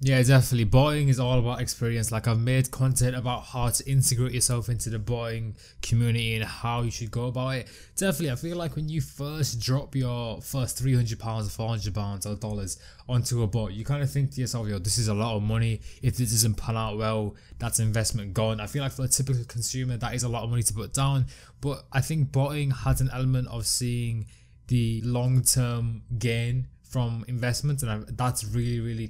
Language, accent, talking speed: English, British, 210 wpm